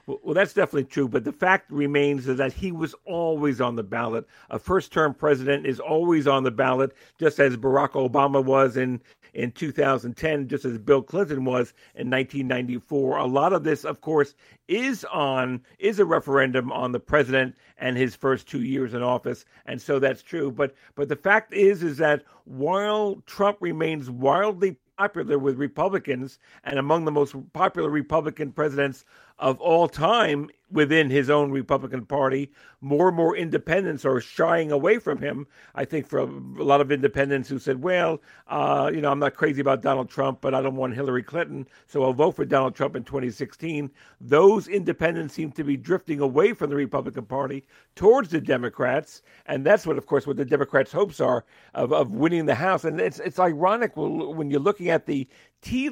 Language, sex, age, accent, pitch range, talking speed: English, male, 50-69, American, 135-160 Hz, 190 wpm